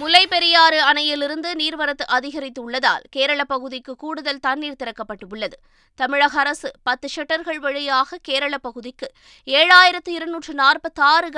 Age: 20-39